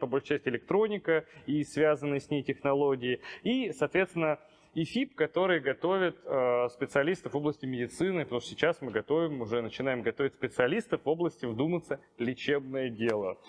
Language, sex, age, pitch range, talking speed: Russian, male, 20-39, 135-185 Hz, 150 wpm